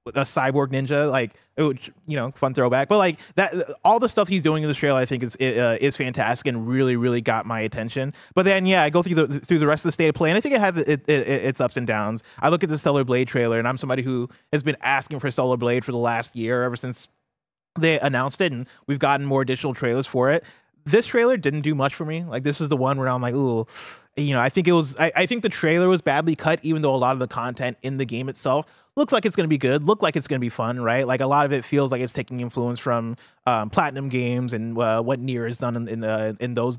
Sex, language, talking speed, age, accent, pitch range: male, English, 285 wpm, 20-39, American, 120-155 Hz